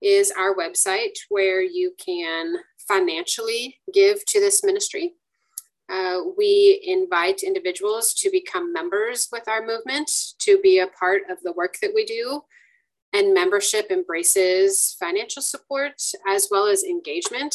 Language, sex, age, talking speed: English, female, 30-49, 135 wpm